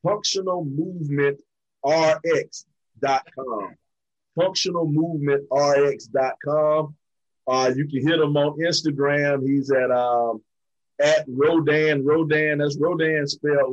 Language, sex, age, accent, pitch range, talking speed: English, male, 30-49, American, 130-160 Hz, 80 wpm